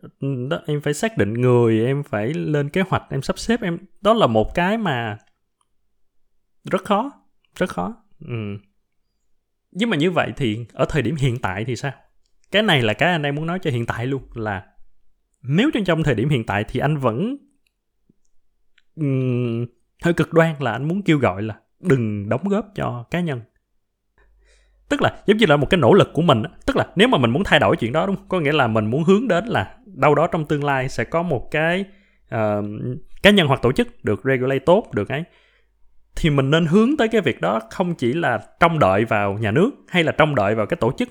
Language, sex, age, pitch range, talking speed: Vietnamese, male, 20-39, 115-175 Hz, 215 wpm